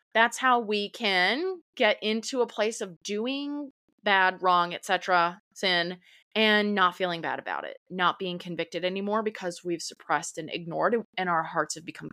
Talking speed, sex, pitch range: 175 wpm, female, 180-240 Hz